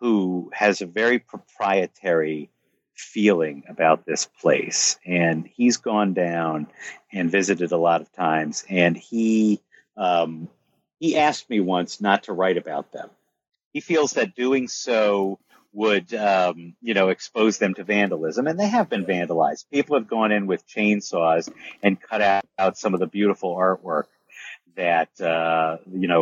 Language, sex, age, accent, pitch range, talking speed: English, male, 50-69, American, 85-110 Hz, 155 wpm